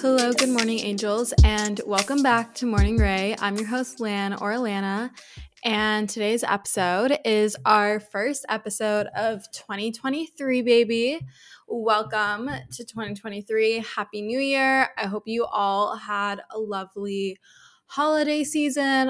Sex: female